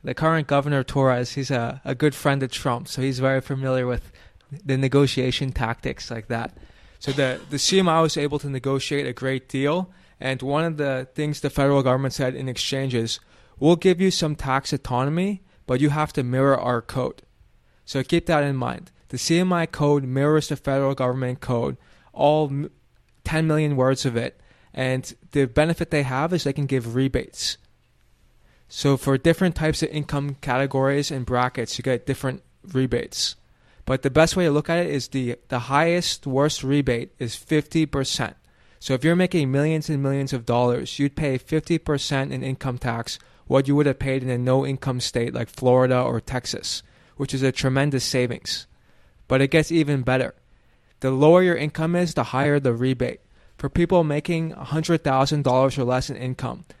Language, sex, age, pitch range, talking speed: English, male, 20-39, 130-150 Hz, 180 wpm